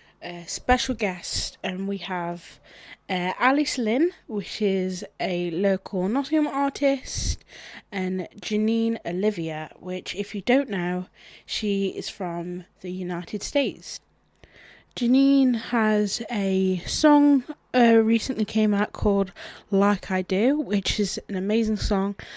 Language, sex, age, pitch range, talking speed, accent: English, female, 20-39, 185-225 Hz, 125 wpm, British